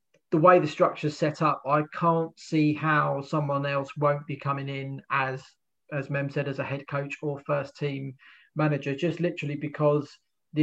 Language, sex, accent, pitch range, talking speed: English, male, British, 140-155 Hz, 185 wpm